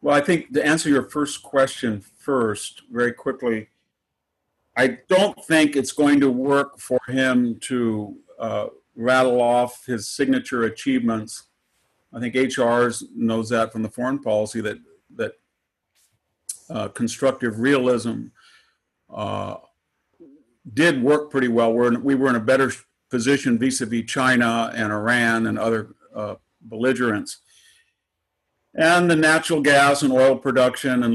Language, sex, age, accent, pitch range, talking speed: English, male, 50-69, American, 115-140 Hz, 135 wpm